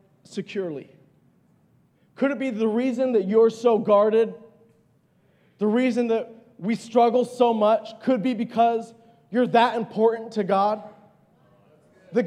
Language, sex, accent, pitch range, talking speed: English, male, American, 220-260 Hz, 125 wpm